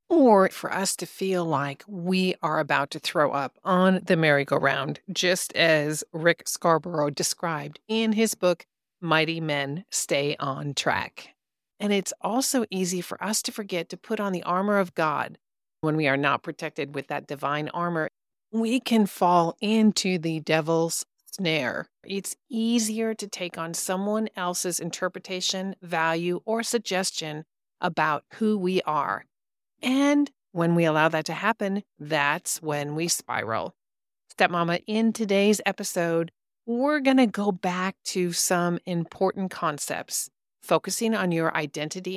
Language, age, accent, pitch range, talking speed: English, 40-59, American, 160-205 Hz, 145 wpm